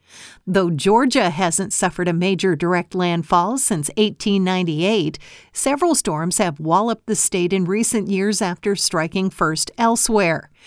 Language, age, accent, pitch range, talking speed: English, 50-69, American, 175-215 Hz, 130 wpm